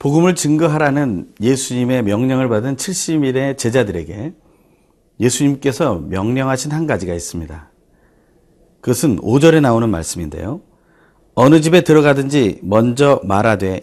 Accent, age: native, 40-59